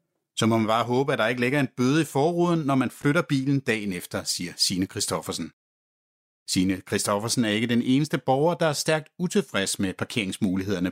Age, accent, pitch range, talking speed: 60-79, native, 110-155 Hz, 190 wpm